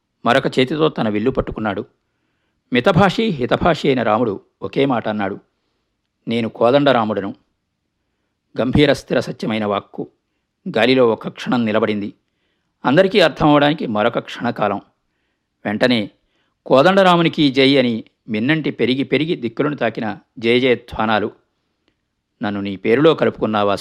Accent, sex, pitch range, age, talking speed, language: native, male, 105-150 Hz, 50-69, 100 wpm, Telugu